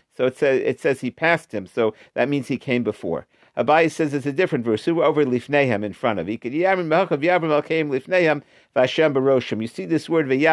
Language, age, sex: English, 50-69, male